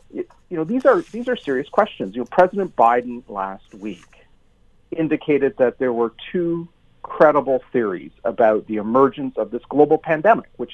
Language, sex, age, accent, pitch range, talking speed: English, male, 40-59, American, 110-170 Hz, 160 wpm